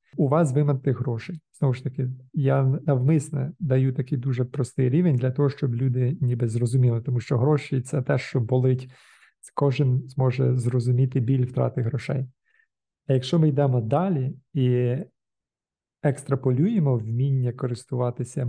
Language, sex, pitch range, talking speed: Ukrainian, male, 125-145 Hz, 140 wpm